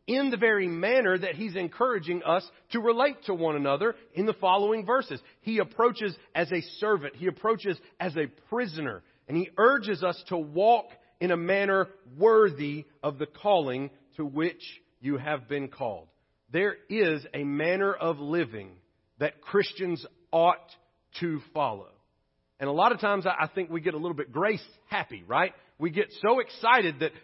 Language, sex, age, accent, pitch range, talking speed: English, male, 40-59, American, 155-210 Hz, 170 wpm